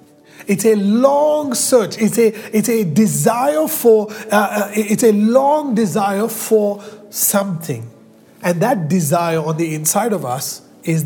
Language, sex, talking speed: English, male, 140 wpm